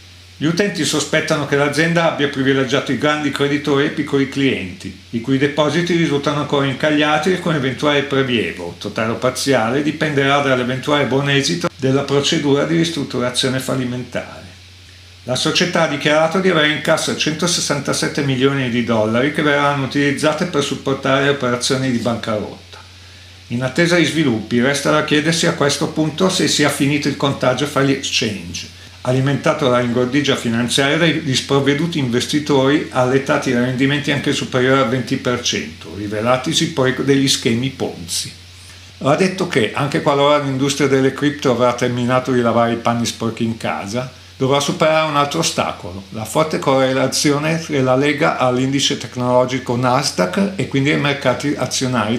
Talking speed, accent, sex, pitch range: 150 wpm, native, male, 120-145 Hz